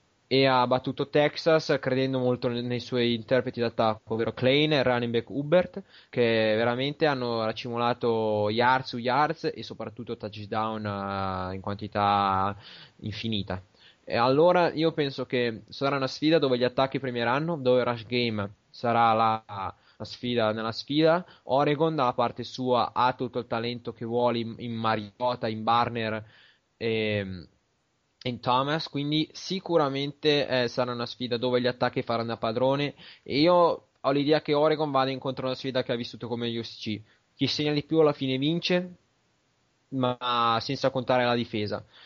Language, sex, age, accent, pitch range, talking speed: Italian, male, 20-39, native, 115-140 Hz, 155 wpm